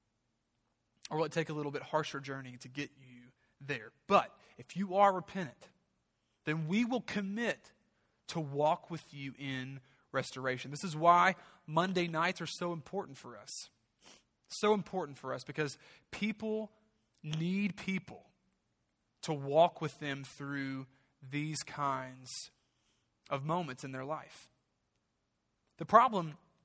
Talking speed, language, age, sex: 135 wpm, English, 30-49, male